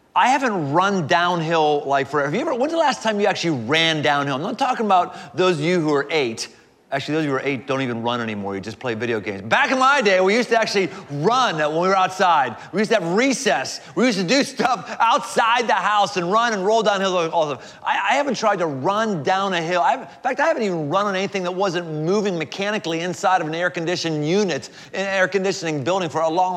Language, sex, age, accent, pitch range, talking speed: English, male, 30-49, American, 160-240 Hz, 245 wpm